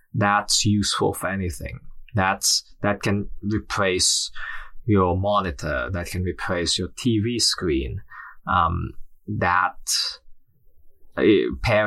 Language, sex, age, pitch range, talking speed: English, male, 20-39, 90-105 Hz, 100 wpm